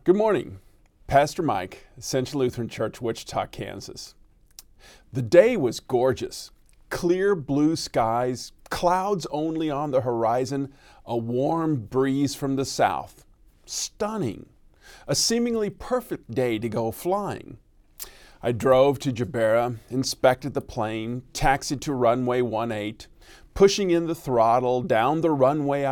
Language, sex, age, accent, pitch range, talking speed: English, male, 40-59, American, 120-165 Hz, 125 wpm